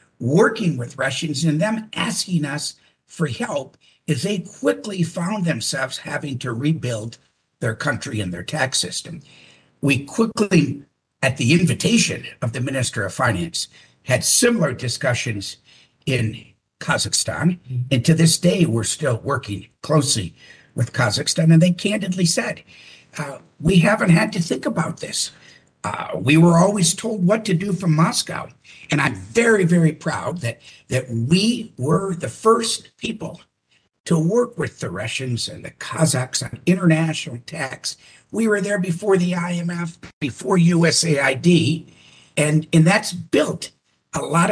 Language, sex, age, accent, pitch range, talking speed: German, male, 60-79, American, 130-175 Hz, 145 wpm